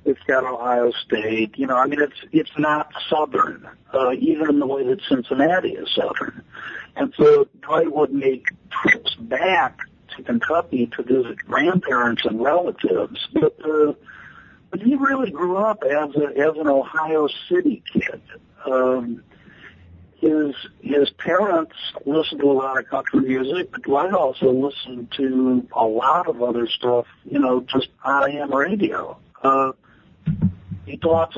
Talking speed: 145 wpm